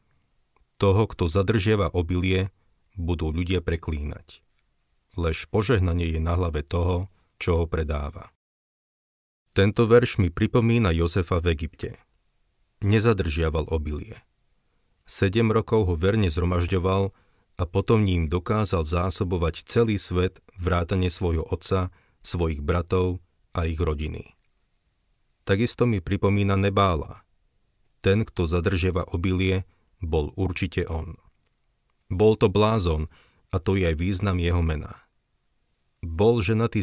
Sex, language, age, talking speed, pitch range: male, Slovak, 40-59, 110 wpm, 85-100 Hz